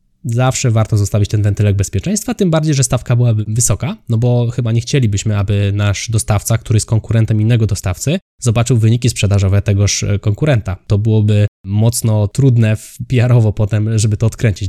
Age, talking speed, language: 20-39, 160 wpm, Polish